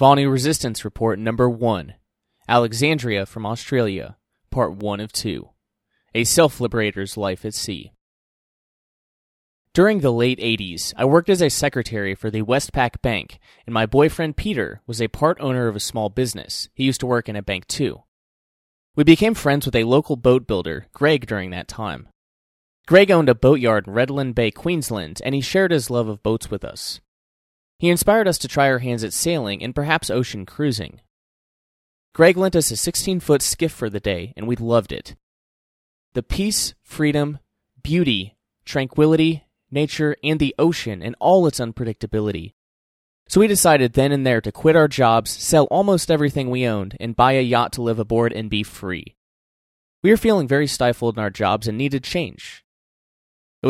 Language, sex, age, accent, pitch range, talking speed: English, male, 20-39, American, 105-145 Hz, 175 wpm